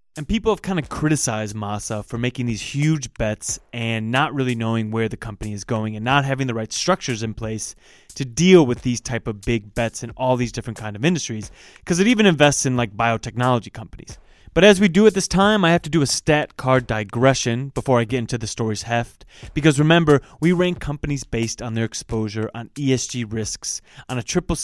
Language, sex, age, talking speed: English, male, 20-39, 215 wpm